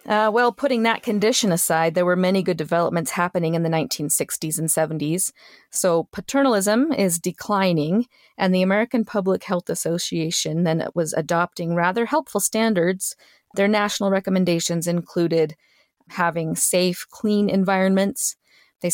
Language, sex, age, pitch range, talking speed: English, female, 30-49, 170-210 Hz, 135 wpm